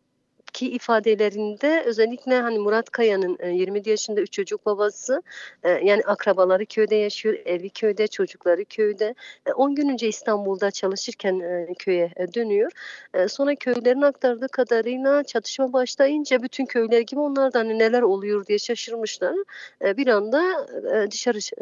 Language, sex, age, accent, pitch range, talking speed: German, female, 40-59, Turkish, 190-260 Hz, 125 wpm